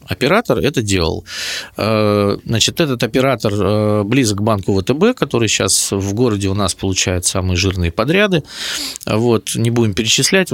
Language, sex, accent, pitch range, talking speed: Russian, male, native, 105-150 Hz, 130 wpm